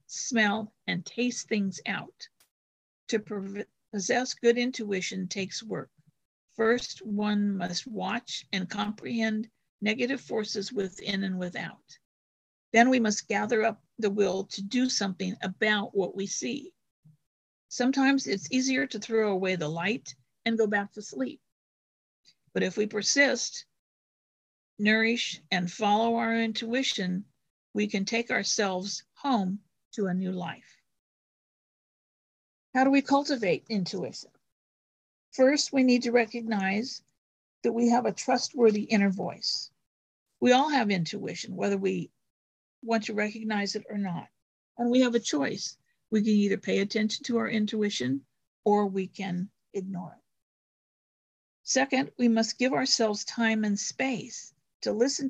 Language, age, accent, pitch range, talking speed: English, 50-69, American, 195-240 Hz, 135 wpm